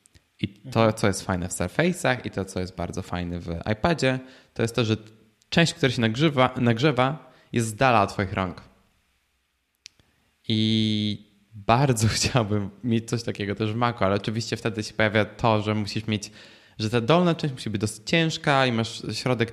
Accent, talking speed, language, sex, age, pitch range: native, 180 wpm, Polish, male, 20-39, 105-125 Hz